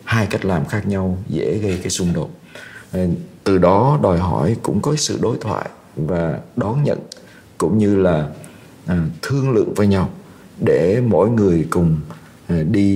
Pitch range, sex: 85-110 Hz, male